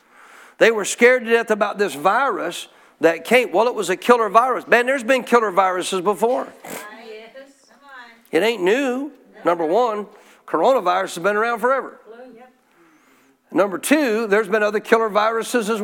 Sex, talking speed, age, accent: male, 150 wpm, 50-69, American